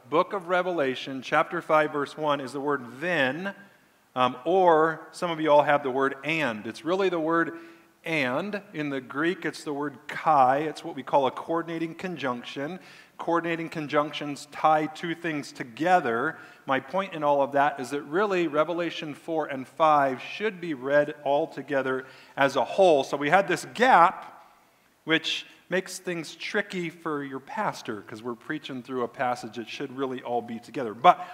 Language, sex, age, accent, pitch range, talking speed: English, male, 40-59, American, 130-165 Hz, 175 wpm